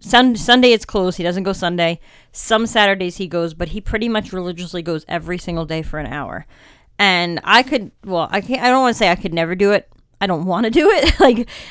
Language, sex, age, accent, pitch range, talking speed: English, female, 30-49, American, 170-205 Hz, 240 wpm